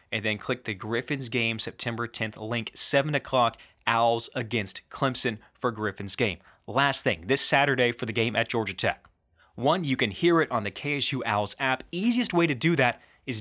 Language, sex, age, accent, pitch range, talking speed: English, male, 20-39, American, 110-135 Hz, 190 wpm